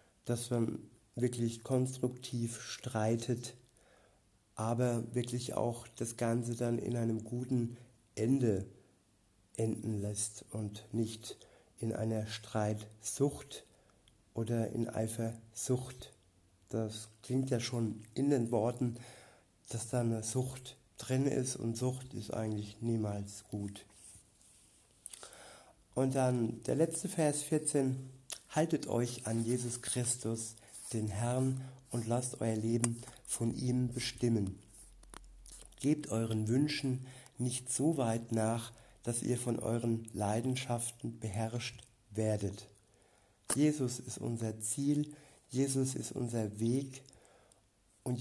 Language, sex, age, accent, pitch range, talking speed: German, male, 50-69, German, 110-125 Hz, 110 wpm